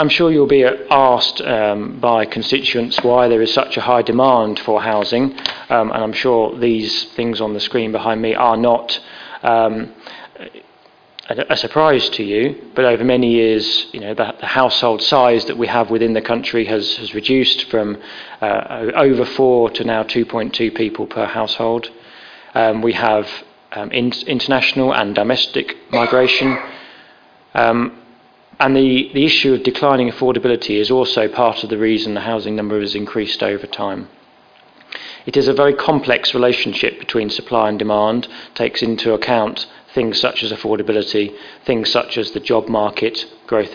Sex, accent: male, British